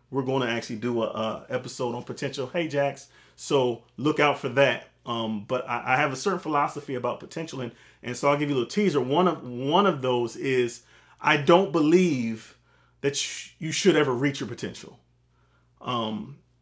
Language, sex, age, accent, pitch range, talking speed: English, male, 30-49, American, 120-150 Hz, 190 wpm